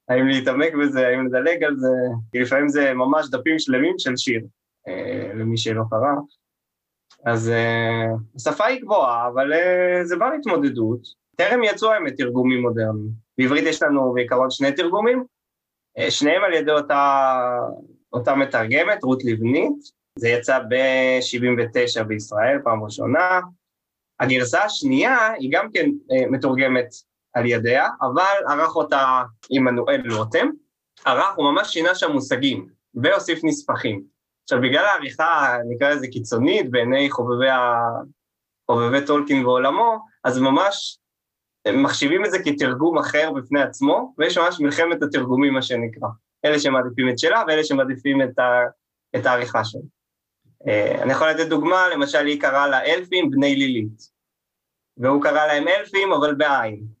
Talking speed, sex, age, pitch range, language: 130 wpm, male, 20-39, 125-165 Hz, Hebrew